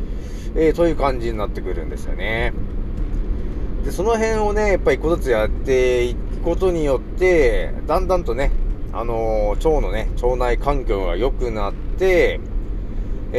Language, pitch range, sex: Japanese, 105-170 Hz, male